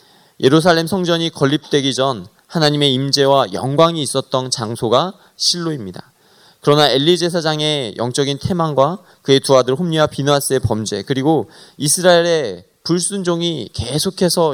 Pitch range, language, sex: 130-175 Hz, Korean, male